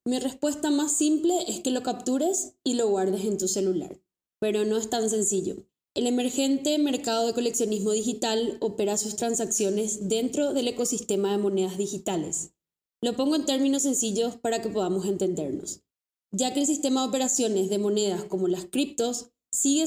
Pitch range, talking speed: 210-270 Hz, 165 wpm